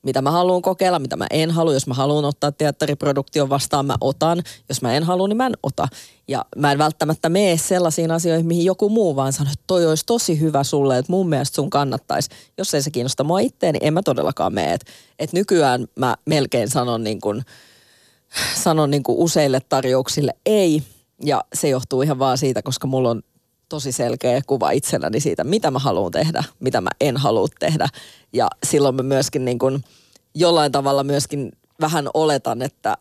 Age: 30-49